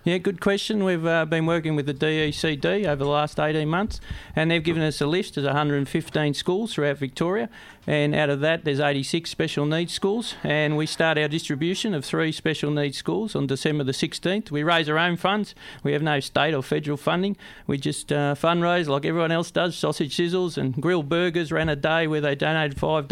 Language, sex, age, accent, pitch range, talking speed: English, male, 40-59, Australian, 145-170 Hz, 210 wpm